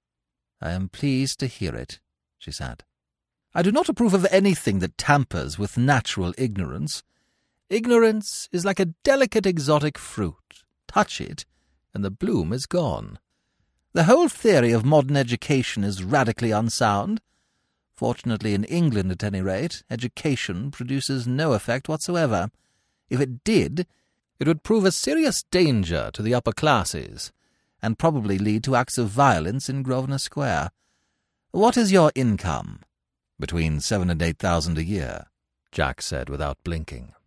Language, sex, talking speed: English, male, 145 wpm